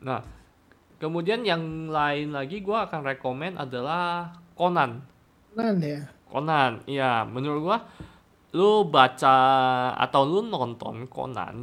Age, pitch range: 20-39, 125-155 Hz